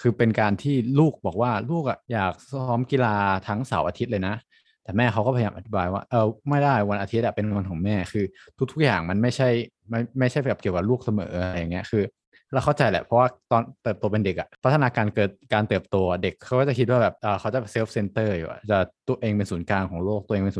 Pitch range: 95-120 Hz